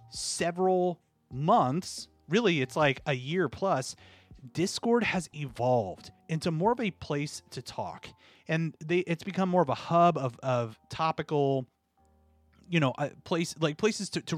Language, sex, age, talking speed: English, male, 30-49, 155 wpm